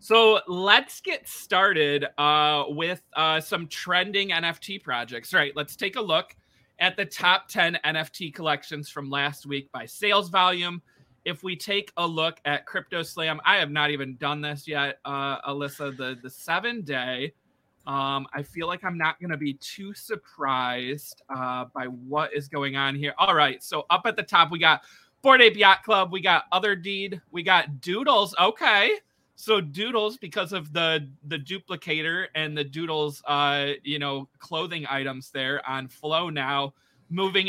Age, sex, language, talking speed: 20-39, male, English, 170 wpm